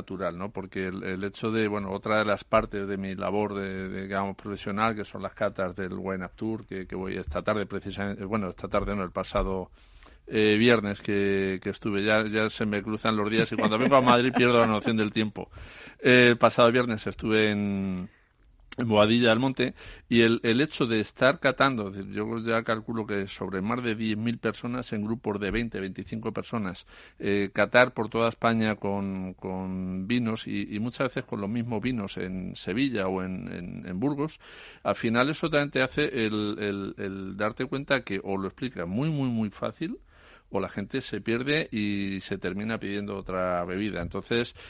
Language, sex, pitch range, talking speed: Spanish, male, 95-115 Hz, 195 wpm